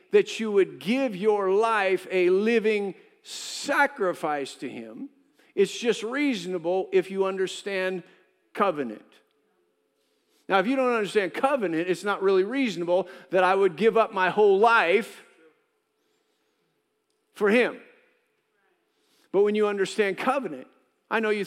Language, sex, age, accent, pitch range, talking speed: English, male, 50-69, American, 195-285 Hz, 130 wpm